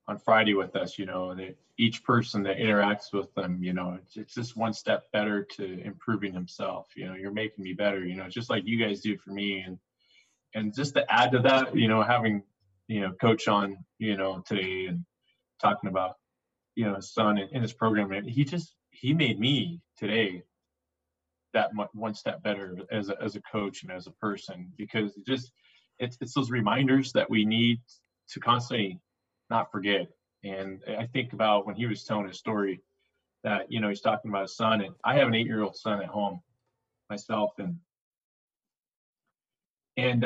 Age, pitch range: 20-39, 100-125 Hz